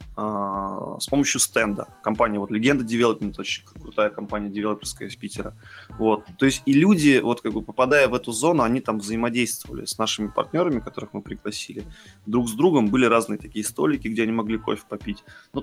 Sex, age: male, 20-39